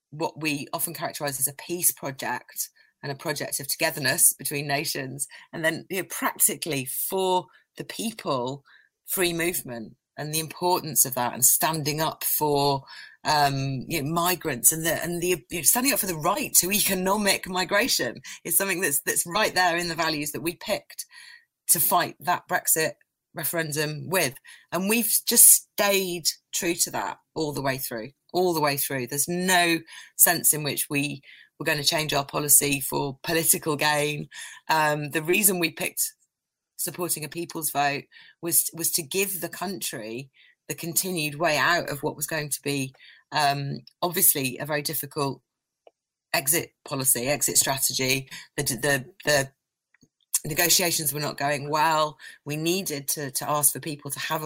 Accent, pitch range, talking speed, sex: British, 140-175 Hz, 165 wpm, female